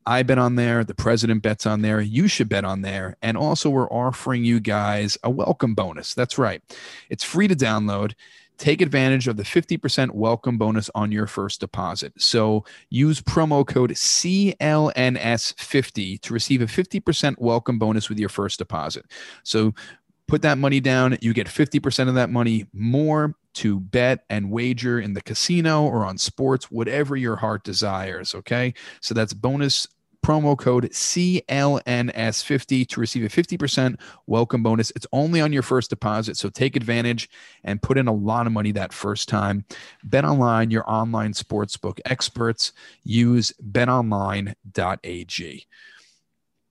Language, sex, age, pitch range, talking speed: English, male, 30-49, 105-135 Hz, 155 wpm